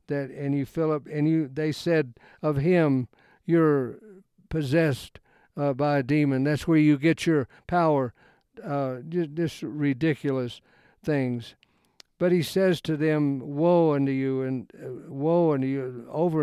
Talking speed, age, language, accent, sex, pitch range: 150 wpm, 60-79, English, American, male, 135-170 Hz